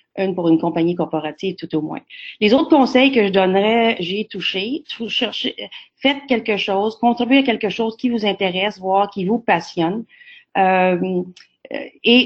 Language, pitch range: English, 180-225 Hz